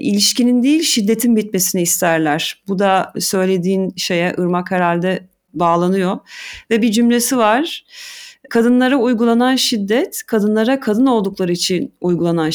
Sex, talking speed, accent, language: female, 115 wpm, native, Turkish